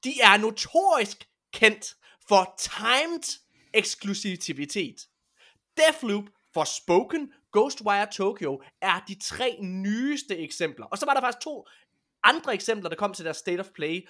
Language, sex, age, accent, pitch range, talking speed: Danish, male, 20-39, native, 175-255 Hz, 135 wpm